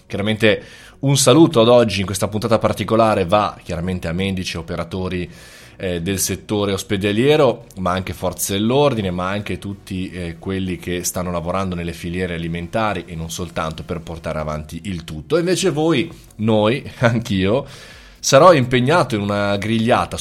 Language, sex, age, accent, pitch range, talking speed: Italian, male, 20-39, native, 90-115 Hz, 150 wpm